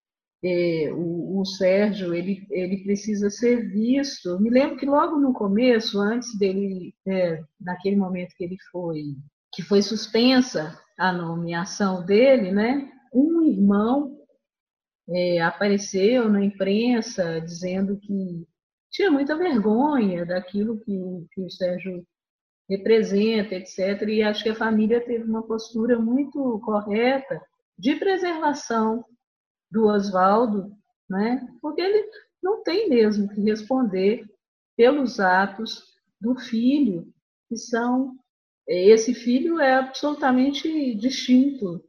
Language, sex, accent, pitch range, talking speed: Portuguese, female, Brazilian, 195-255 Hz, 110 wpm